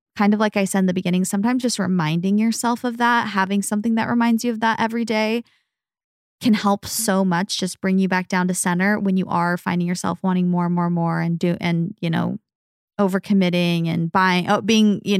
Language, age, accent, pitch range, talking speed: English, 20-39, American, 185-225 Hz, 215 wpm